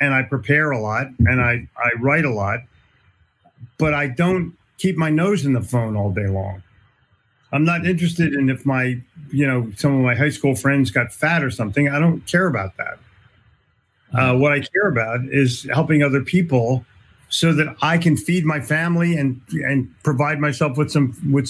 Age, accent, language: 50-69, American, English